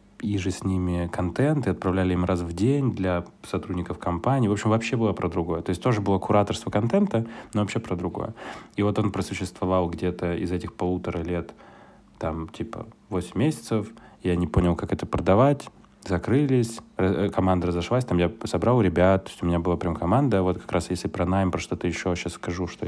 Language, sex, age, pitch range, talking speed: Russian, male, 20-39, 90-110 Hz, 200 wpm